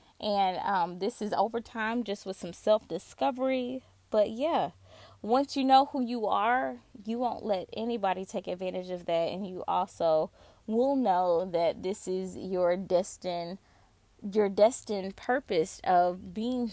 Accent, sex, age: American, female, 20-39